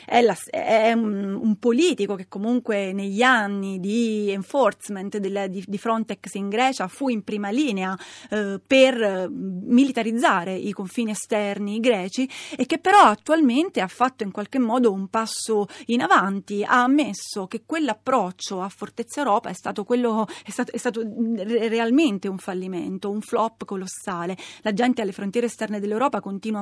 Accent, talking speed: native, 145 wpm